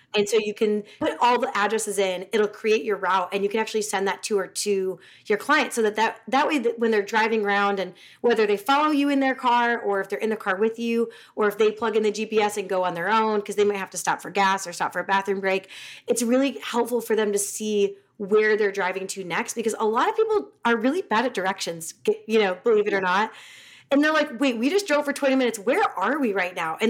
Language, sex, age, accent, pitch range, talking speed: English, female, 30-49, American, 200-245 Hz, 270 wpm